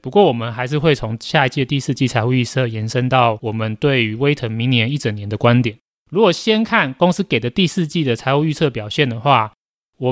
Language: Chinese